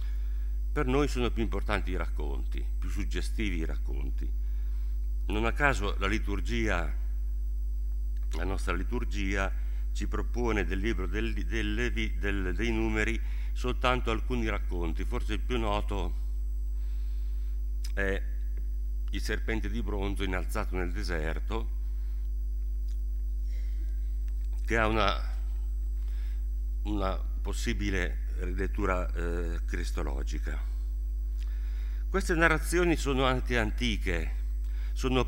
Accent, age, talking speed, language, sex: native, 60-79, 100 wpm, Italian, male